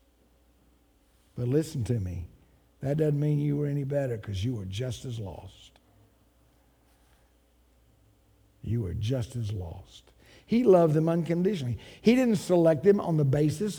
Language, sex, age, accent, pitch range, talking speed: English, male, 50-69, American, 110-165 Hz, 140 wpm